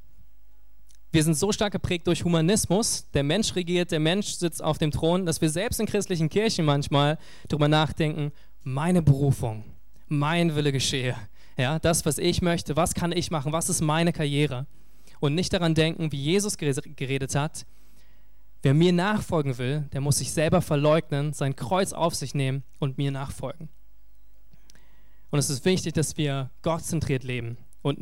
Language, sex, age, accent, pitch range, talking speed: German, male, 20-39, German, 135-170 Hz, 165 wpm